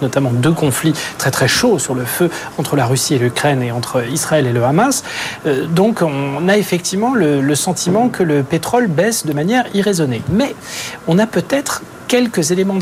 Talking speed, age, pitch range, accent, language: 190 wpm, 40-59, 150-215 Hz, French, French